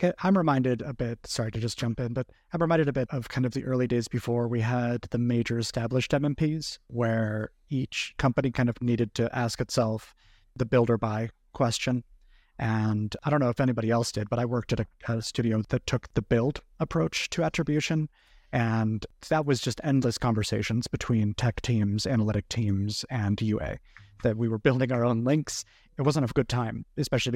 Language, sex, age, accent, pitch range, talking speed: English, male, 30-49, American, 110-130 Hz, 195 wpm